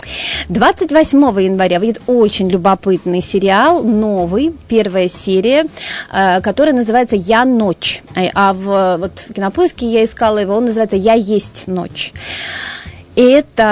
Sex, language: female, Russian